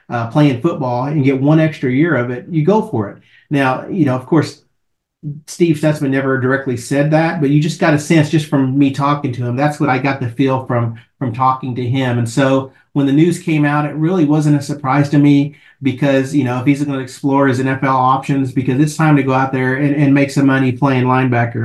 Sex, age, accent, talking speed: male, 40-59, American, 240 wpm